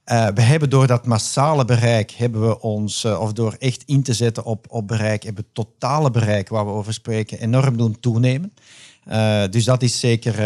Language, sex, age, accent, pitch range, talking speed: Dutch, male, 50-69, Dutch, 110-125 Hz, 210 wpm